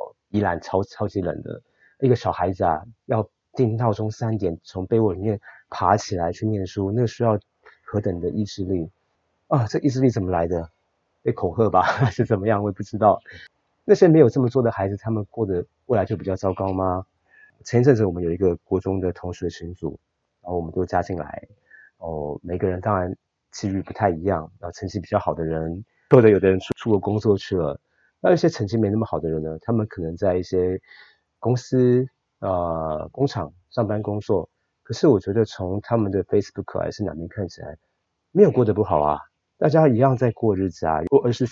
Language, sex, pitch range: Chinese, male, 90-115 Hz